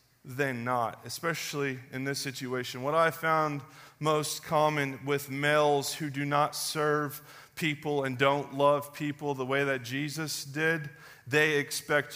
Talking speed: 145 wpm